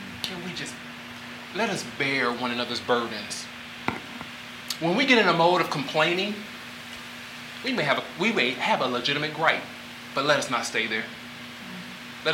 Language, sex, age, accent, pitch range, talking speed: English, male, 30-49, American, 125-195 Hz, 165 wpm